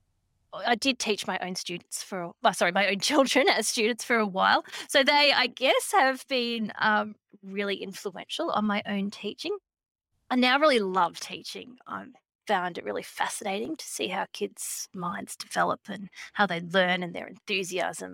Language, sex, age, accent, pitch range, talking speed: English, female, 20-39, Australian, 190-275 Hz, 170 wpm